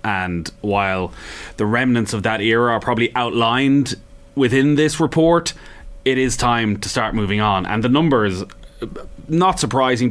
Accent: Irish